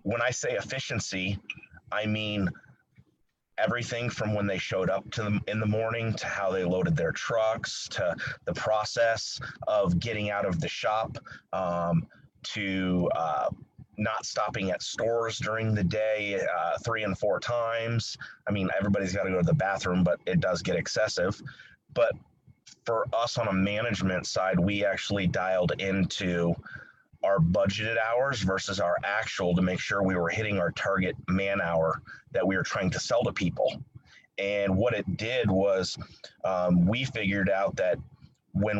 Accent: American